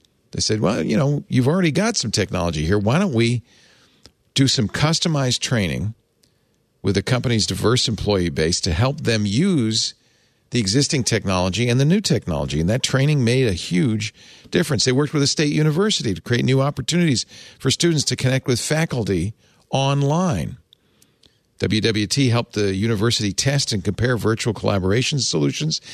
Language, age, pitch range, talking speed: English, 50-69, 95-135 Hz, 160 wpm